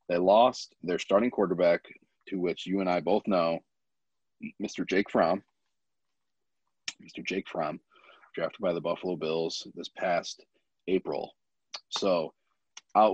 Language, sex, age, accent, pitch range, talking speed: English, male, 30-49, American, 90-105 Hz, 130 wpm